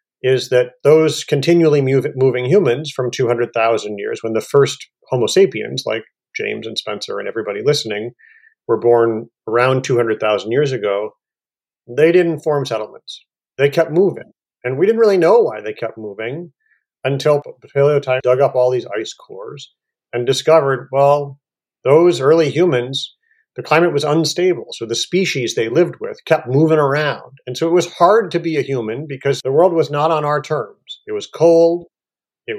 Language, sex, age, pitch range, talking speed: English, male, 40-59, 125-170 Hz, 170 wpm